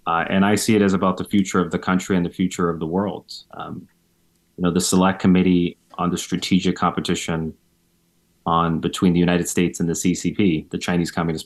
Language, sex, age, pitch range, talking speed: English, male, 30-49, 85-95 Hz, 205 wpm